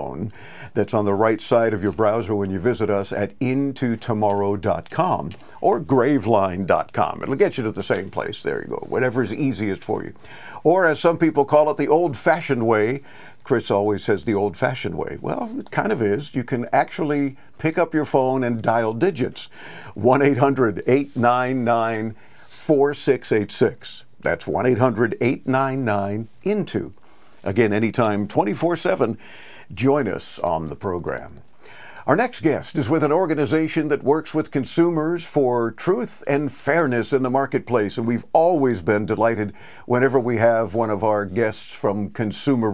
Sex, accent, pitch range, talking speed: male, American, 110-150 Hz, 155 wpm